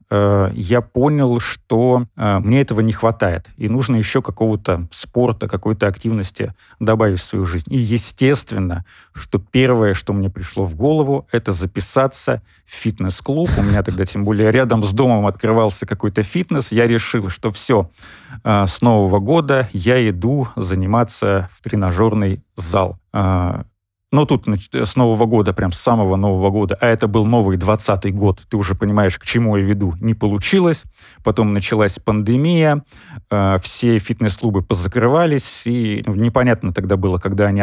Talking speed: 155 wpm